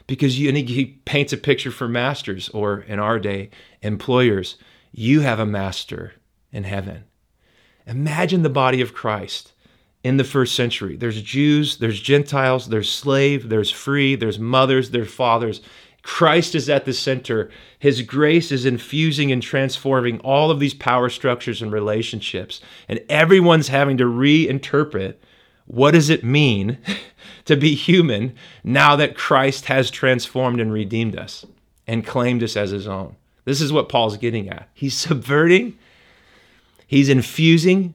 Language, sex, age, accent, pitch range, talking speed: English, male, 30-49, American, 110-140 Hz, 145 wpm